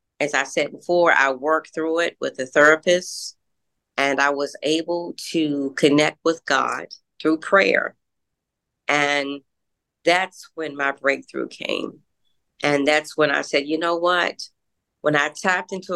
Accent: American